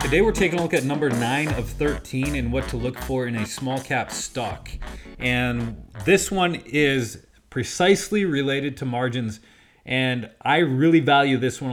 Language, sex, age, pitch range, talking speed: English, male, 30-49, 115-135 Hz, 175 wpm